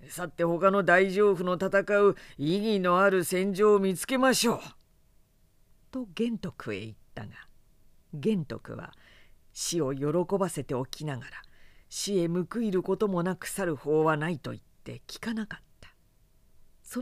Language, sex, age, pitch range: Japanese, female, 50-69, 140-190 Hz